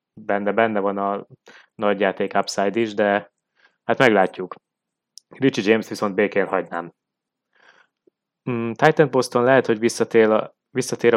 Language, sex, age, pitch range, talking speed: Hungarian, male, 20-39, 100-115 Hz, 115 wpm